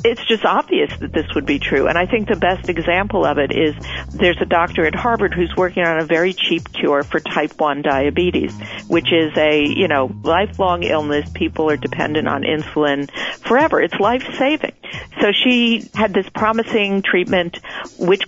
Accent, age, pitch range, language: American, 50-69, 170-240 Hz, English